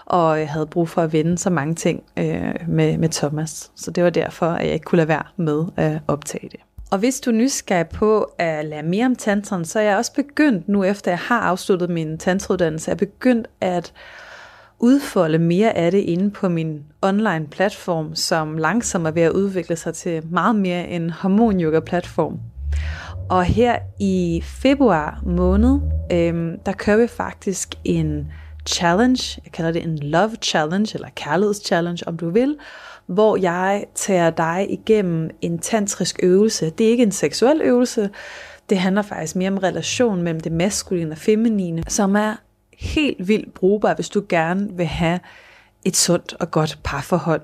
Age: 30-49